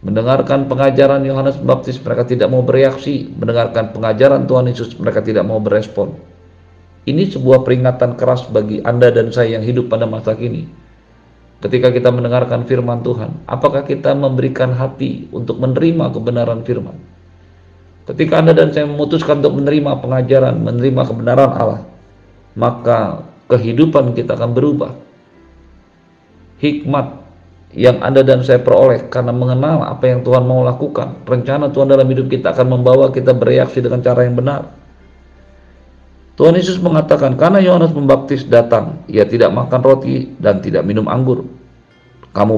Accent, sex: native, male